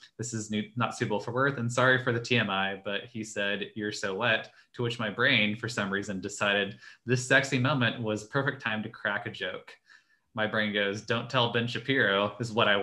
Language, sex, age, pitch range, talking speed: English, male, 20-39, 105-125 Hz, 210 wpm